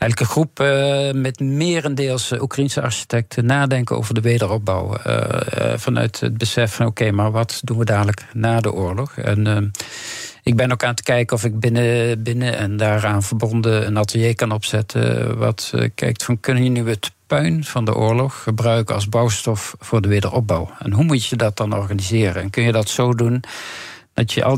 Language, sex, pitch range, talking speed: Dutch, male, 105-125 Hz, 195 wpm